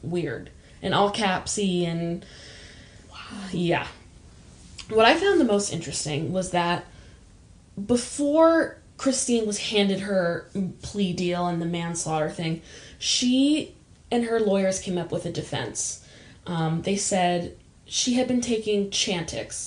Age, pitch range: 10-29, 175-225 Hz